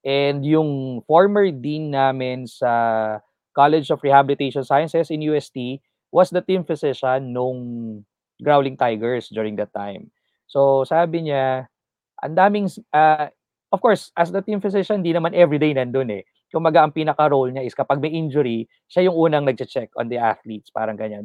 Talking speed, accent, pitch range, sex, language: 155 wpm, Filipino, 120-155 Hz, male, English